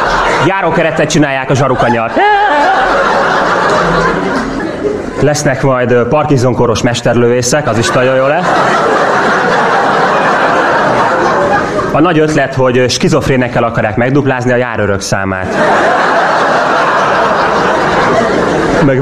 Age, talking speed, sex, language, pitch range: 30-49, 75 wpm, male, Hungarian, 110-150 Hz